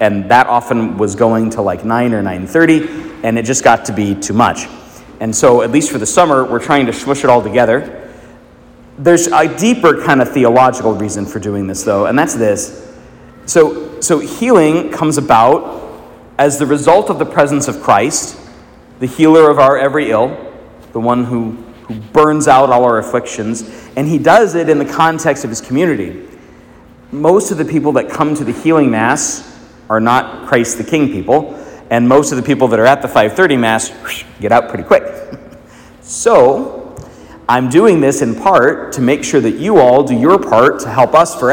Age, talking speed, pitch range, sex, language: 40-59, 195 wpm, 115-150 Hz, male, English